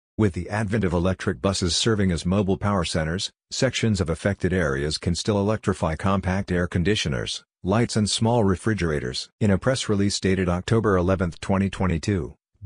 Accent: American